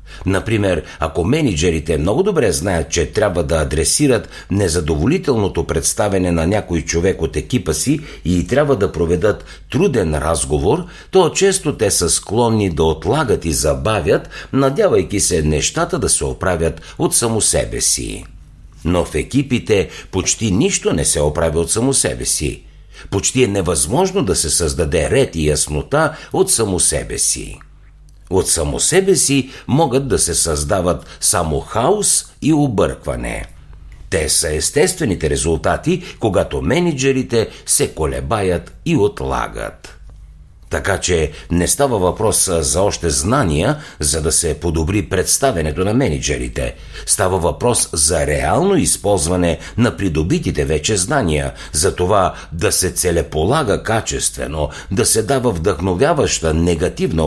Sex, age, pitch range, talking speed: male, 60-79, 80-110 Hz, 130 wpm